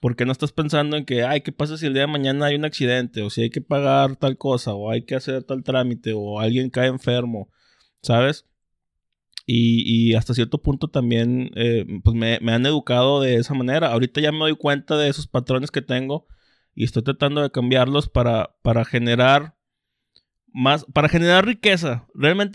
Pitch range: 125-150 Hz